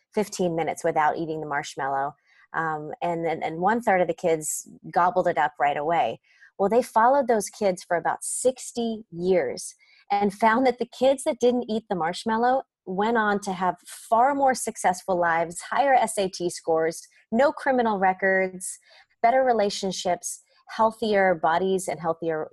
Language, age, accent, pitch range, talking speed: English, 30-49, American, 175-230 Hz, 155 wpm